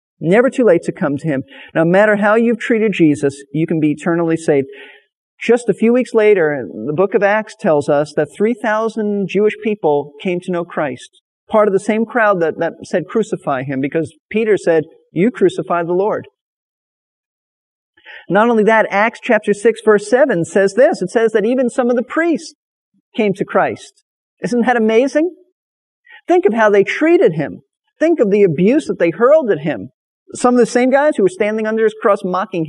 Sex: male